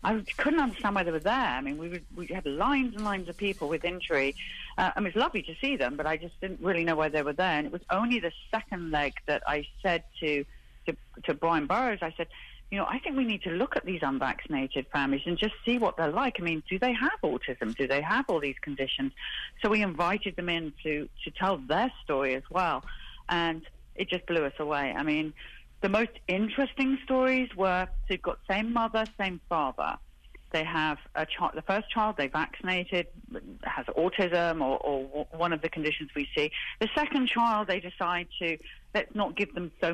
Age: 40-59